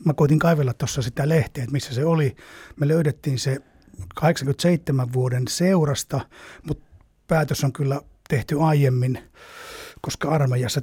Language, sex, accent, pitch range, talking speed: Finnish, male, native, 135-160 Hz, 135 wpm